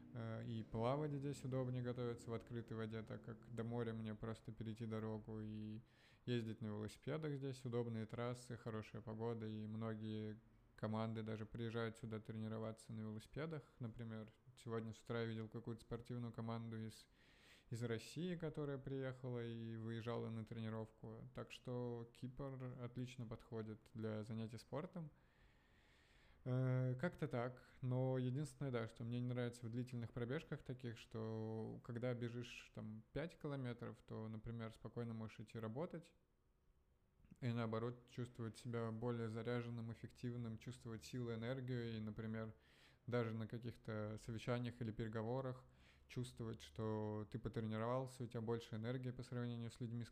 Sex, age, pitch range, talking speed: male, 20-39, 110-125 Hz, 140 wpm